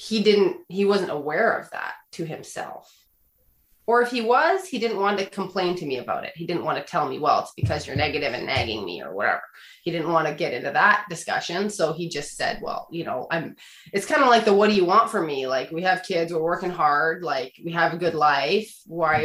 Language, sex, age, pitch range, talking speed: English, female, 20-39, 170-210 Hz, 245 wpm